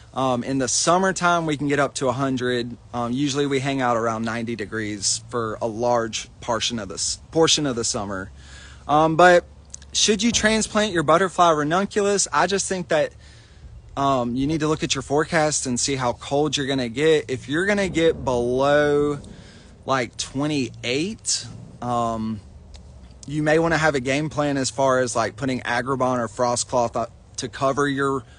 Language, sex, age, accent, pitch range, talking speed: English, male, 20-39, American, 115-150 Hz, 180 wpm